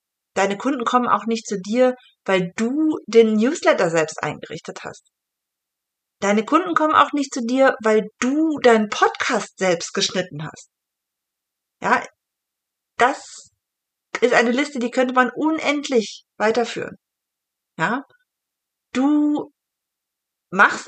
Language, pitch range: German, 205-285 Hz